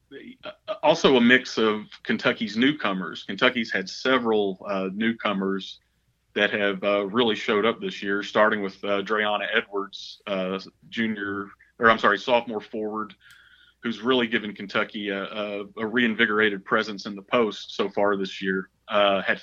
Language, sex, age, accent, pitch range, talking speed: English, male, 30-49, American, 100-115 Hz, 150 wpm